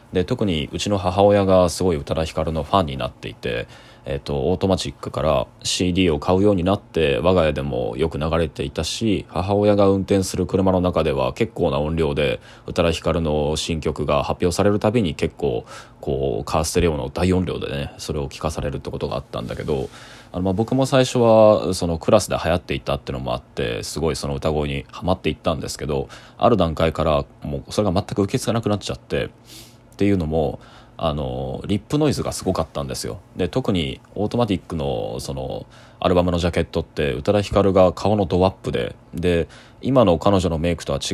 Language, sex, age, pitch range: Japanese, male, 20-39, 80-105 Hz